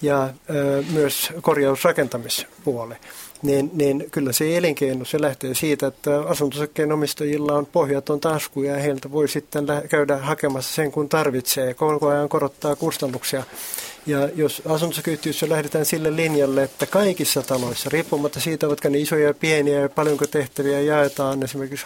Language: Finnish